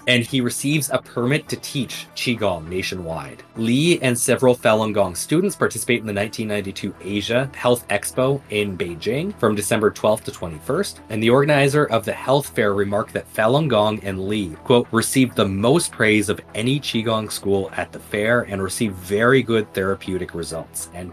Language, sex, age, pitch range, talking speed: English, male, 30-49, 100-125 Hz, 175 wpm